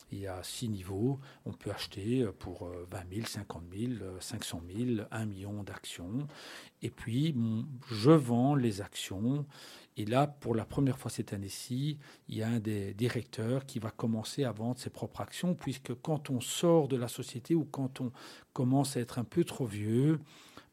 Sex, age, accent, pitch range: male, 50-69, French, 115-140 Hz